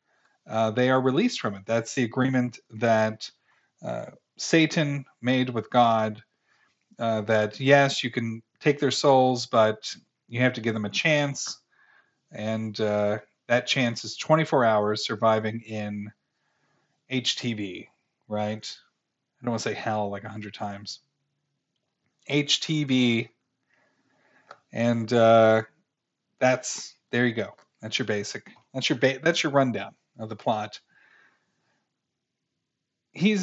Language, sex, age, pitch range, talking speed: English, male, 40-59, 110-140 Hz, 125 wpm